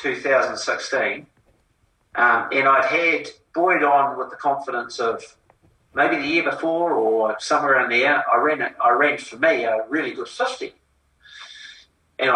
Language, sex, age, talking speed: English, male, 40-59, 150 wpm